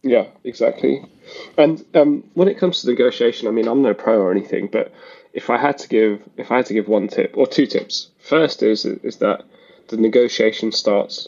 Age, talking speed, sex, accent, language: 10-29, 205 wpm, male, British, English